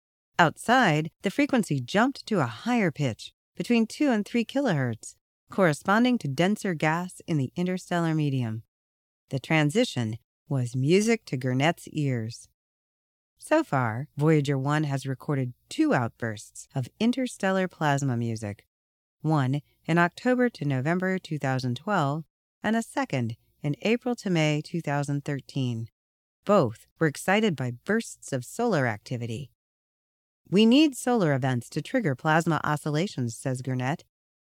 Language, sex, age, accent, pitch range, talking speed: English, female, 40-59, American, 125-190 Hz, 125 wpm